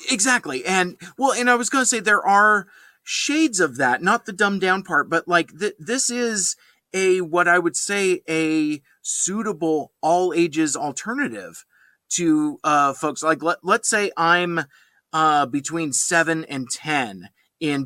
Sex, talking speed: male, 160 wpm